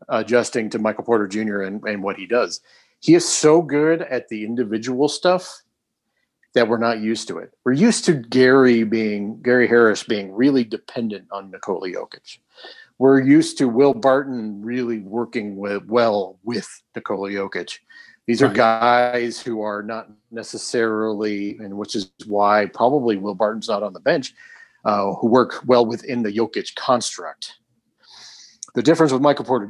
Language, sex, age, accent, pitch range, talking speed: English, male, 40-59, American, 110-140 Hz, 160 wpm